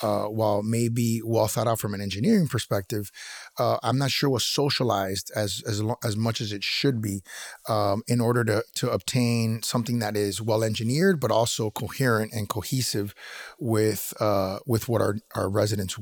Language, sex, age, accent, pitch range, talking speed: English, male, 30-49, American, 110-130 Hz, 175 wpm